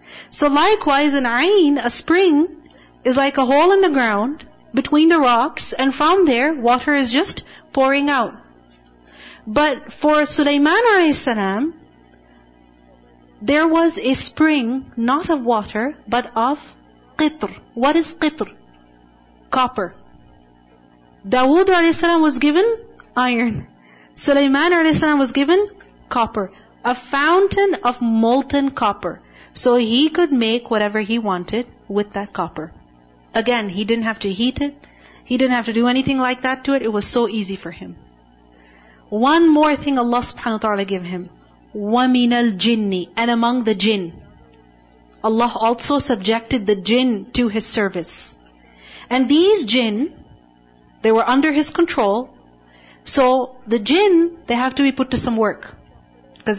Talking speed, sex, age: 140 wpm, female, 40-59